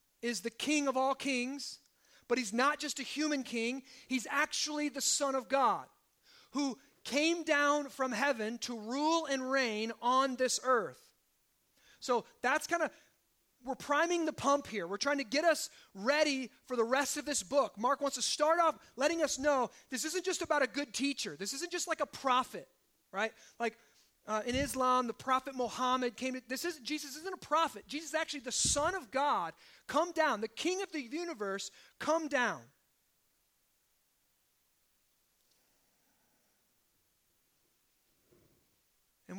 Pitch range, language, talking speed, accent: 230-295 Hz, English, 160 wpm, American